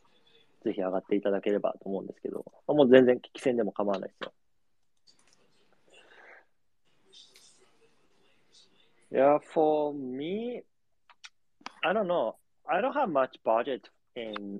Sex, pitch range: male, 105-135 Hz